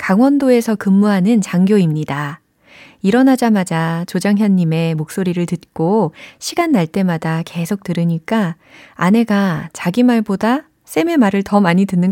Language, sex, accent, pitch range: Korean, female, native, 165-215 Hz